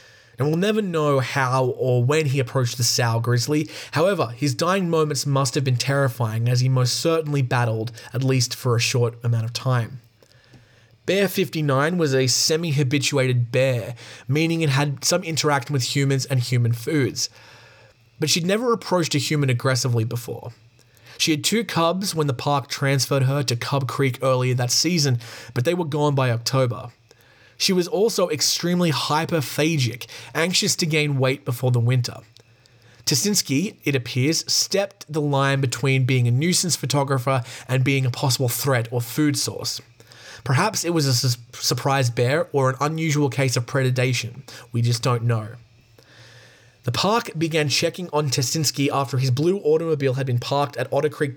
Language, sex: English, male